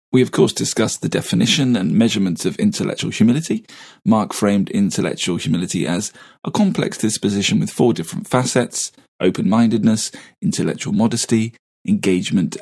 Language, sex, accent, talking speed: English, male, British, 130 wpm